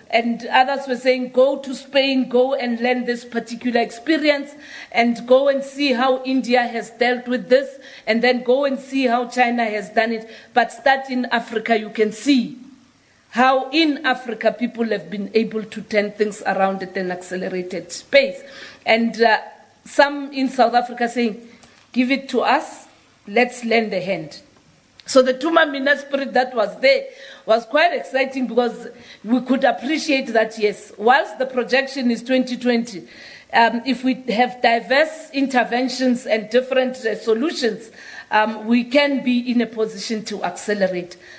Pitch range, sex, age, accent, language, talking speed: 220-265 Hz, female, 40-59, South African, English, 160 wpm